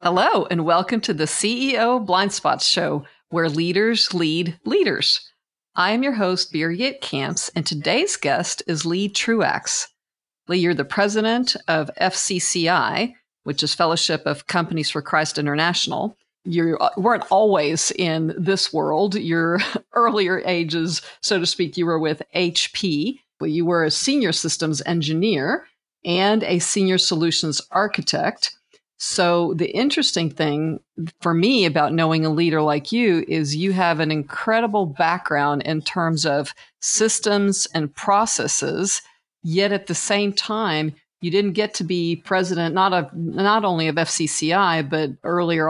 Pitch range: 160-200 Hz